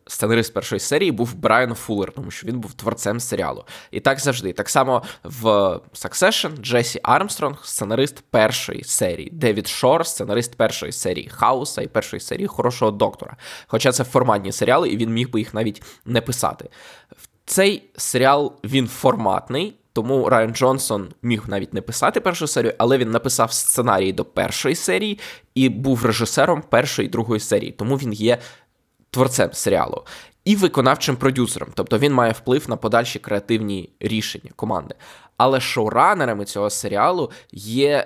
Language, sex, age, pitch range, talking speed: Ukrainian, male, 20-39, 110-135 Hz, 155 wpm